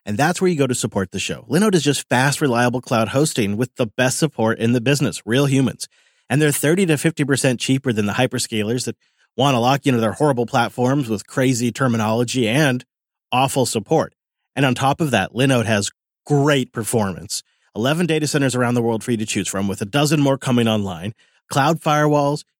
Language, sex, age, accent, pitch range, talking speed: English, male, 30-49, American, 110-145 Hz, 200 wpm